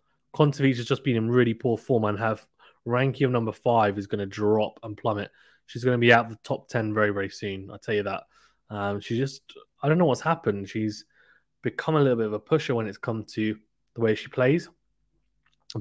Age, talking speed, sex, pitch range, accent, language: 20-39, 230 wpm, male, 105-125 Hz, British, English